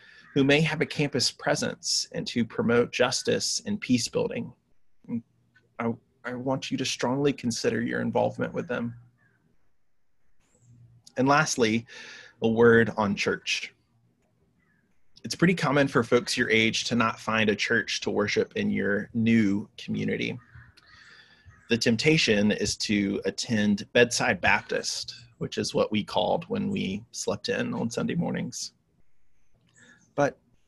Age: 30-49